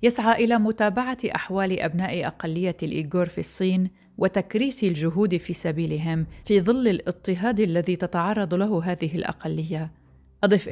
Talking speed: 125 wpm